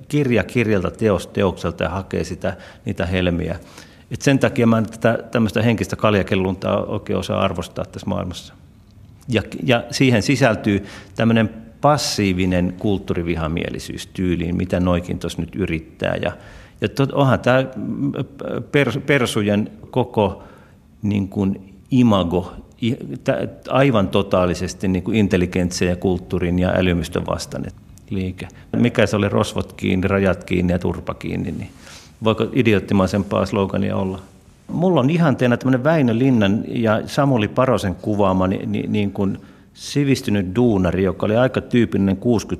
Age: 50-69